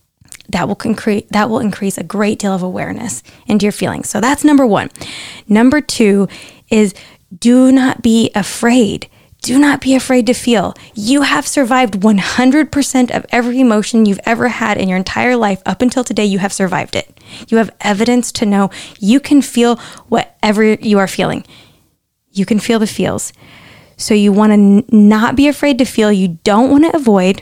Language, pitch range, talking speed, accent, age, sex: English, 200-250 Hz, 180 wpm, American, 10-29, female